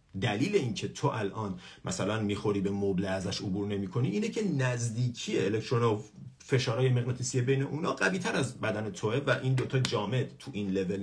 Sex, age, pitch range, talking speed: male, 50-69, 100-140 Hz, 180 wpm